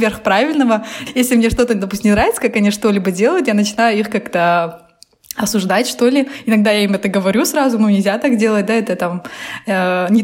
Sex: female